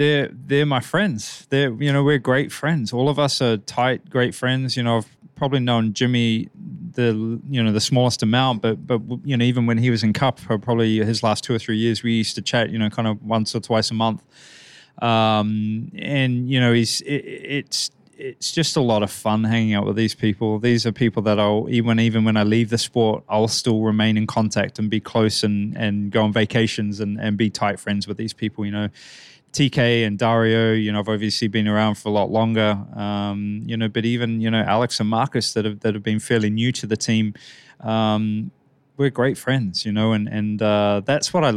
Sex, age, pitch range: male, 20-39, 105-120 Hz